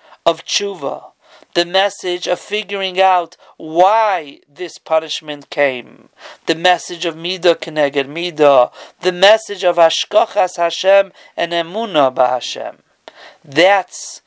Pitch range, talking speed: 160-185 Hz, 115 wpm